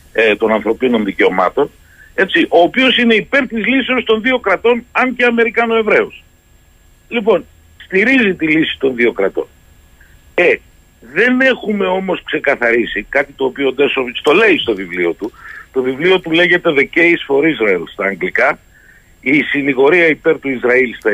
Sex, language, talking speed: male, Greek, 150 wpm